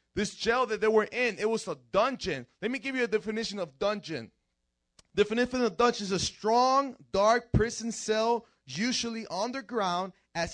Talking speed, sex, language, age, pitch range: 165 wpm, male, English, 20-39, 165-225 Hz